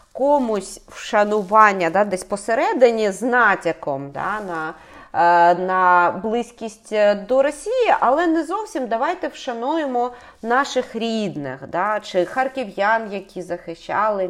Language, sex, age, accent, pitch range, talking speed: Ukrainian, female, 30-49, native, 190-275 Hz, 105 wpm